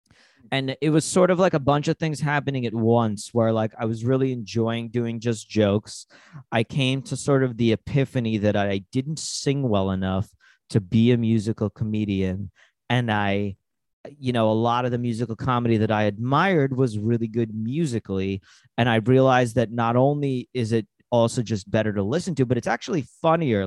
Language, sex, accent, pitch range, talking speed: English, male, American, 110-135 Hz, 190 wpm